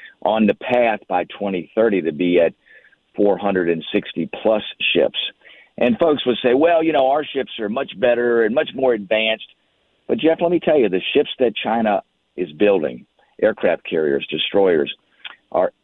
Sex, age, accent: male, 50-69, American